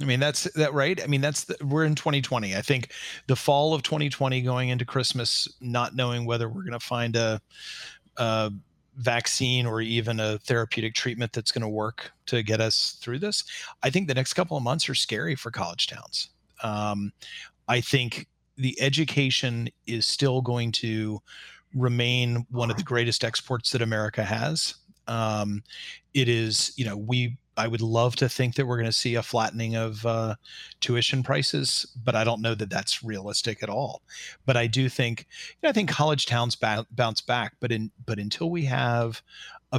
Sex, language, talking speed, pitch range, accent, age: male, English, 190 wpm, 115-140 Hz, American, 40-59